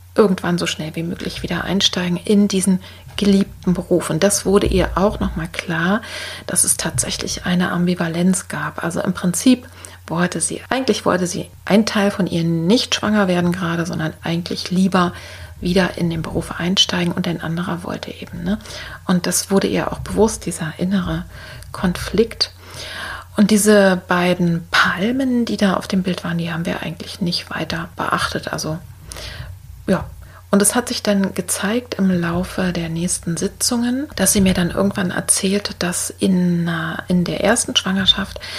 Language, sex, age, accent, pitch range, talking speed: German, female, 40-59, German, 170-200 Hz, 165 wpm